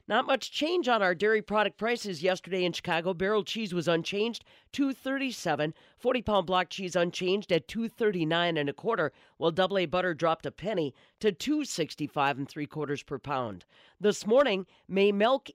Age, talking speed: 40-59, 170 wpm